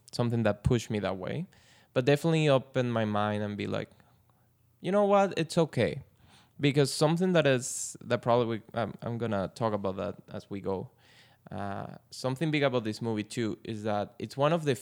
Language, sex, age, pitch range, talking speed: English, male, 20-39, 105-125 Hz, 190 wpm